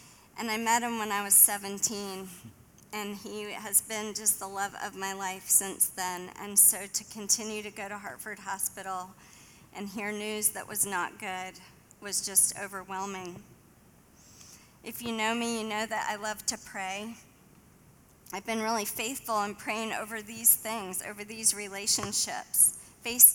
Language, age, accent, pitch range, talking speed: English, 40-59, American, 200-220 Hz, 160 wpm